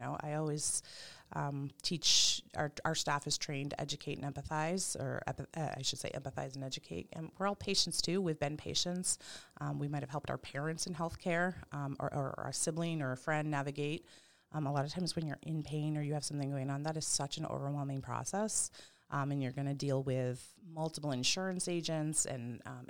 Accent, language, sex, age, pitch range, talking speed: American, English, female, 30-49, 135-160 Hz, 210 wpm